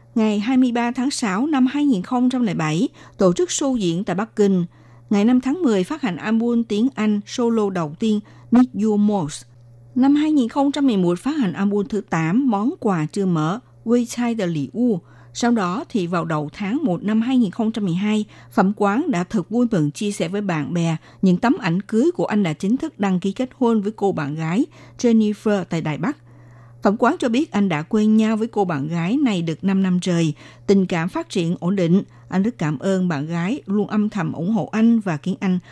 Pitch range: 170-235 Hz